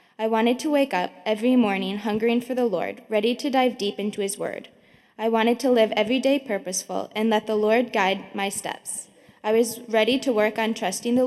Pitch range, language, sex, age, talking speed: 200-235 Hz, English, female, 10-29, 215 wpm